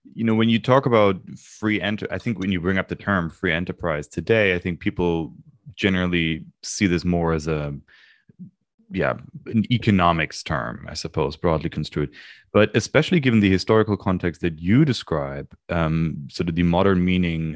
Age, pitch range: 30-49, 80-105 Hz